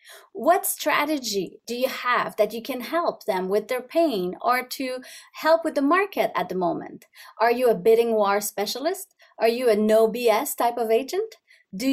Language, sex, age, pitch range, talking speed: English, female, 30-49, 215-310 Hz, 185 wpm